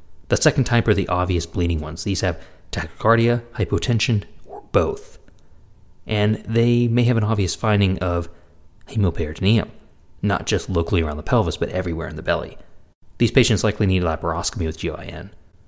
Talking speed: 160 wpm